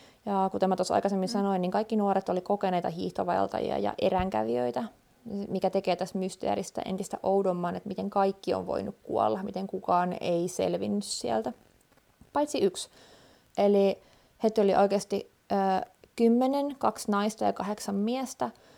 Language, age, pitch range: Finnish, 20-39, 185-215 Hz